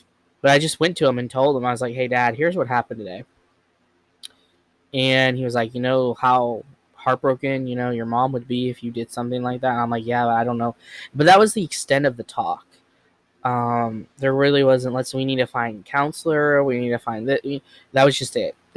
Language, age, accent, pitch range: English, 10-29, American, 115-140 Hz